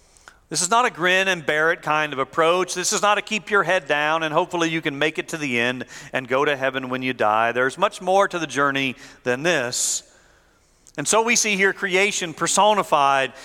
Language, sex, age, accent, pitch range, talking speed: English, male, 40-59, American, 140-195 Hz, 225 wpm